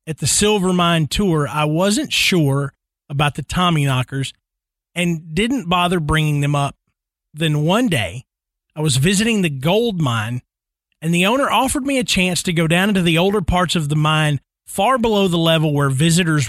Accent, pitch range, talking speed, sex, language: American, 145-185 Hz, 180 wpm, male, English